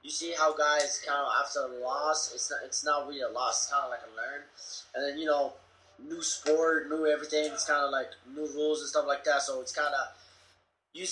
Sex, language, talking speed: male, English, 245 wpm